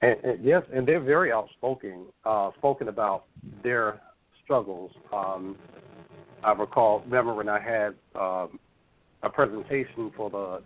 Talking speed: 135 wpm